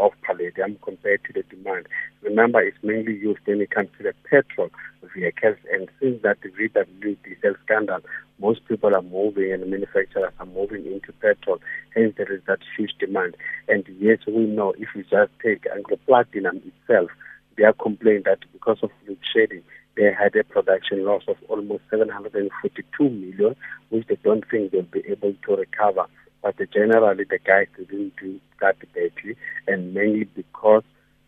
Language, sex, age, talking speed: English, male, 50-69, 165 wpm